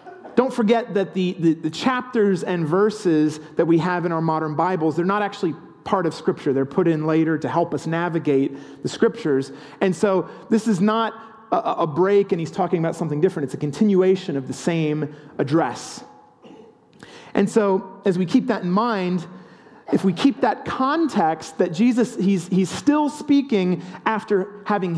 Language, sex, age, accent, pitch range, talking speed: English, male, 40-59, American, 155-205 Hz, 180 wpm